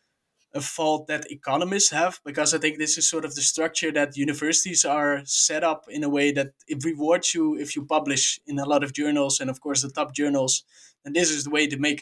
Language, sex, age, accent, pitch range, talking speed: English, male, 20-39, Dutch, 140-155 Hz, 235 wpm